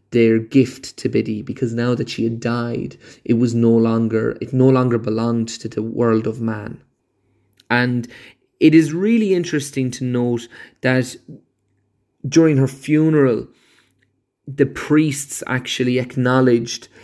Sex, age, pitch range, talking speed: male, 20-39, 115-130 Hz, 135 wpm